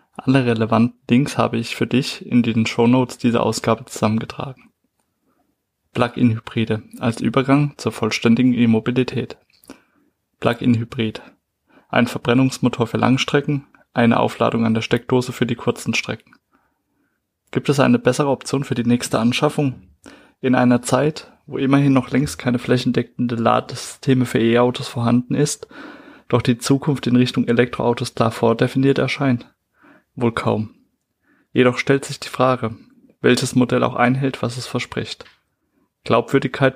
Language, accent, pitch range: German, German, 115-130 Hz